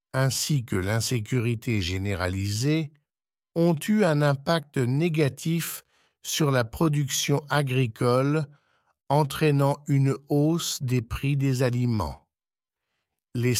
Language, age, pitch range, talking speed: English, 60-79, 115-150 Hz, 95 wpm